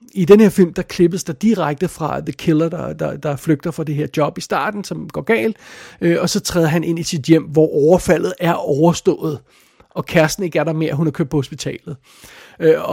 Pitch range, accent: 150-175 Hz, native